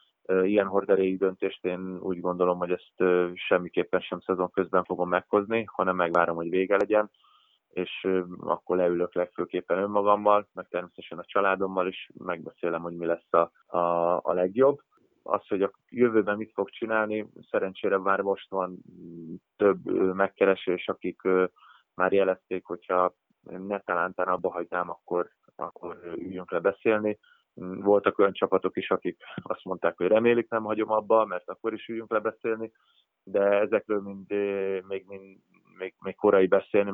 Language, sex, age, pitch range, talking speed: Hungarian, male, 20-39, 90-100 Hz, 150 wpm